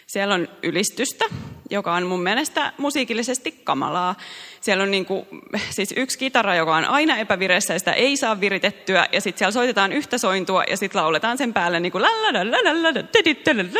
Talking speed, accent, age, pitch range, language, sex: 150 wpm, native, 20-39, 190-275 Hz, Finnish, female